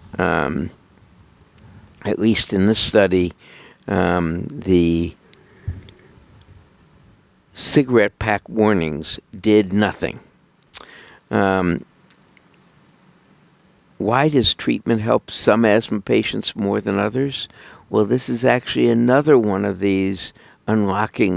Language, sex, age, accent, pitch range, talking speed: English, male, 60-79, American, 95-115 Hz, 95 wpm